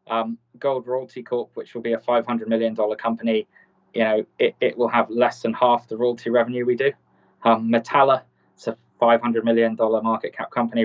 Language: English